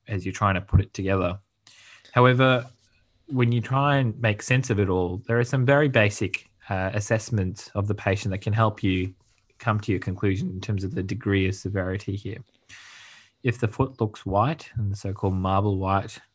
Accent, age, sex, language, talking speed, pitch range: Australian, 20-39, male, English, 195 wpm, 95-115 Hz